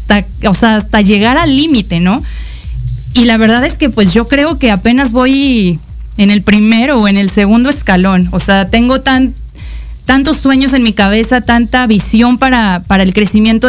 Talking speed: 180 wpm